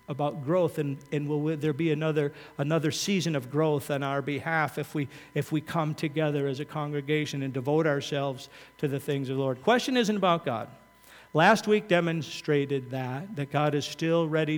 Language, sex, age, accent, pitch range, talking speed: English, male, 50-69, American, 135-175 Hz, 190 wpm